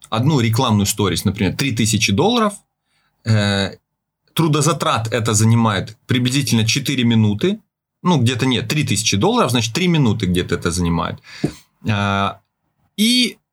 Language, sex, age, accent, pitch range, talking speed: Russian, male, 30-49, native, 115-170 Hz, 110 wpm